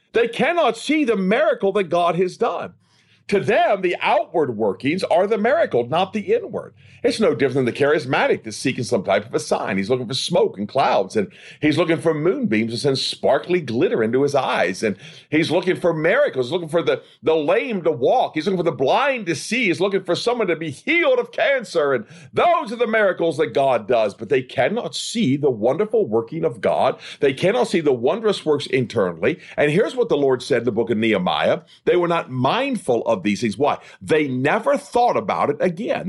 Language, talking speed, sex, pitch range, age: English, 215 wpm, male, 155-245 Hz, 50-69